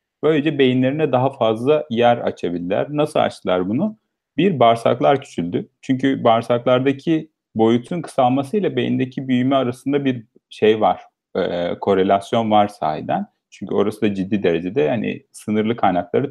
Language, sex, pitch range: Turkish, male, 110-140 Hz